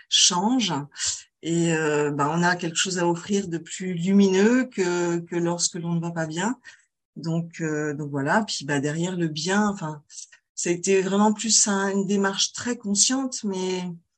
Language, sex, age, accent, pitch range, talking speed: French, female, 40-59, French, 165-200 Hz, 180 wpm